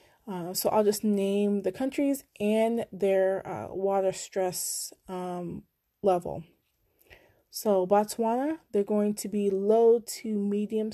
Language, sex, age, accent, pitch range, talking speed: English, female, 20-39, American, 185-225 Hz, 125 wpm